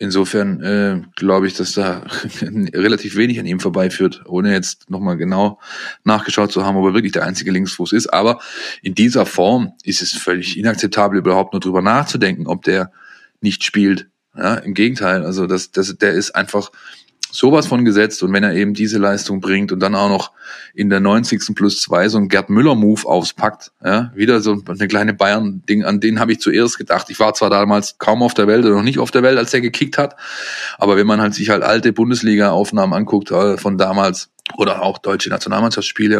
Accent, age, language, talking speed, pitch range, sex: German, 20-39, German, 195 wpm, 100-115 Hz, male